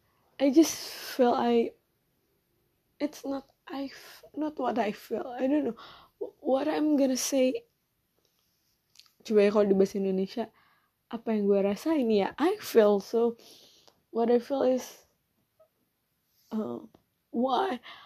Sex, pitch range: female, 225-295 Hz